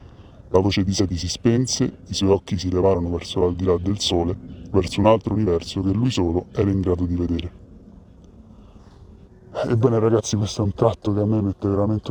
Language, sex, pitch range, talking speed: Italian, female, 90-105 Hz, 195 wpm